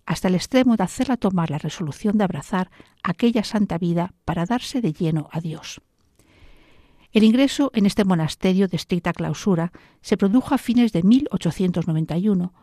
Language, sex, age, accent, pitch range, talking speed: Spanish, female, 50-69, Spanish, 165-215 Hz, 155 wpm